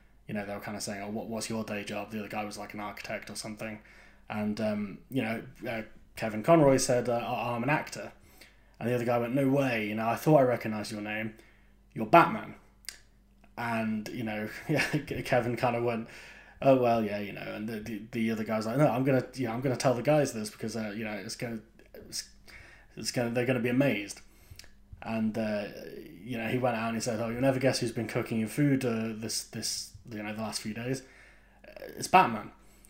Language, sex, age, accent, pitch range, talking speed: English, male, 20-39, British, 105-120 Hz, 230 wpm